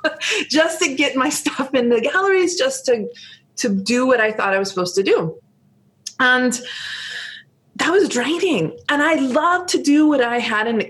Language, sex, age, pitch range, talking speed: English, female, 20-39, 190-255 Hz, 185 wpm